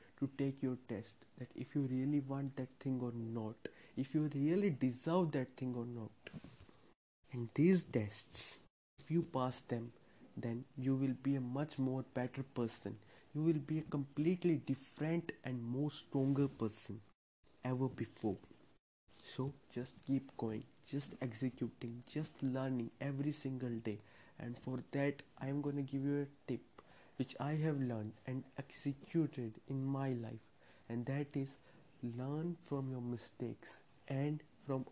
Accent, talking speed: Indian, 155 wpm